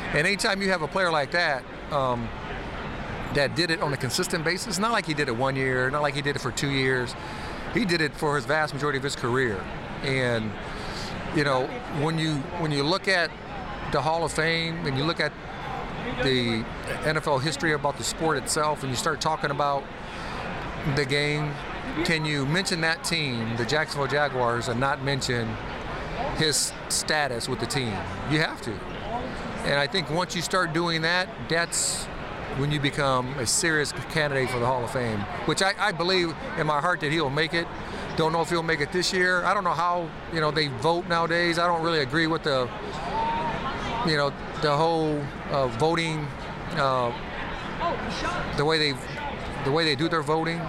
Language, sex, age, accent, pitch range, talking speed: English, male, 50-69, American, 135-165 Hz, 190 wpm